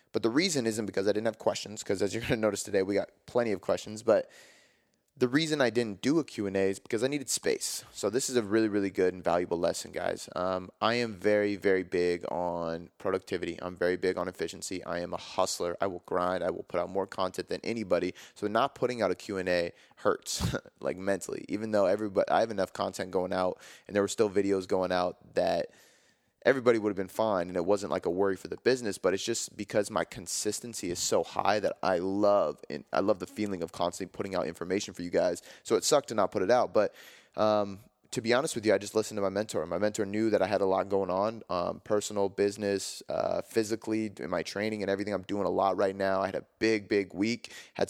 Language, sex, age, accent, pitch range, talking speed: English, male, 20-39, American, 95-110 Hz, 245 wpm